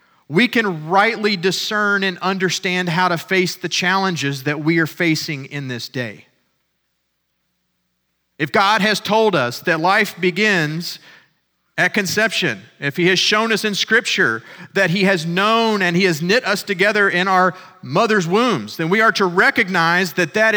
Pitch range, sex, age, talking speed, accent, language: 135-195 Hz, male, 40-59, 165 wpm, American, English